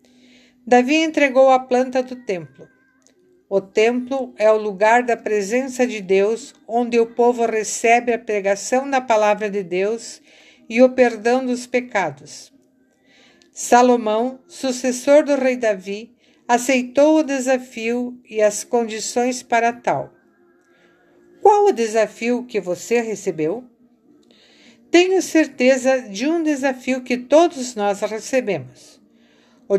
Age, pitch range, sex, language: 50-69, 220-260 Hz, female, Portuguese